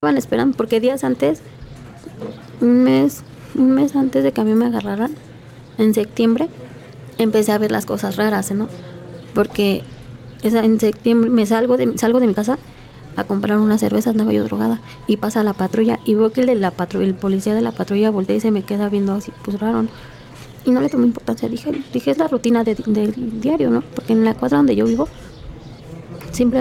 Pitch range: 150-235 Hz